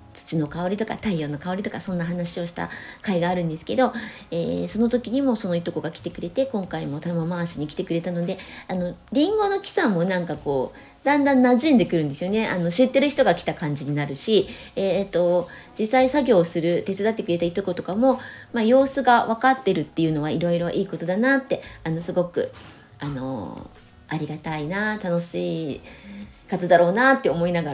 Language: Japanese